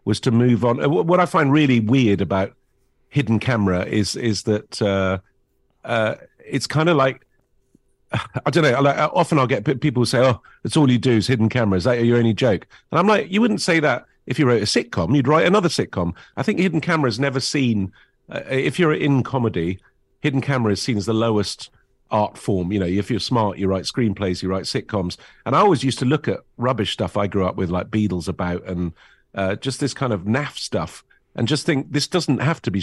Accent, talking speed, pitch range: British, 225 wpm, 95-130 Hz